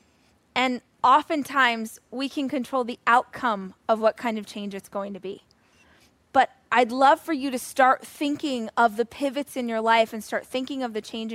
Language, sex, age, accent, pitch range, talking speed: English, female, 20-39, American, 235-295 Hz, 190 wpm